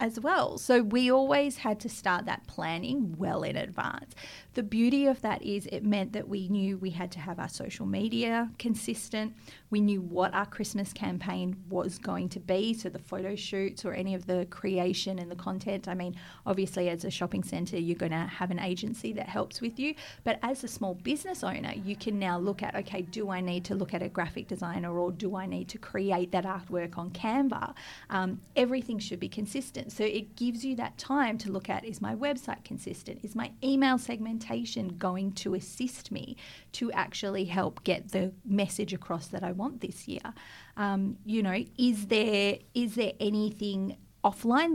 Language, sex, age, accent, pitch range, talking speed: English, female, 30-49, Australian, 185-230 Hz, 200 wpm